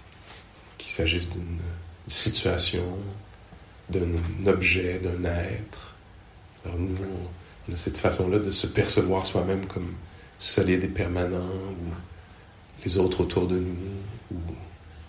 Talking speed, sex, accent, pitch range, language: 110 wpm, male, French, 85-105 Hz, English